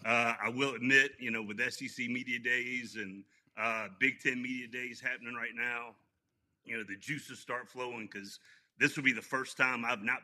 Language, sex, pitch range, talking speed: English, male, 110-130 Hz, 200 wpm